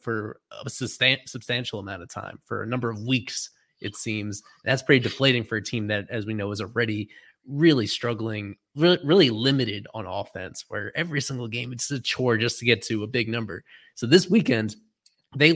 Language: English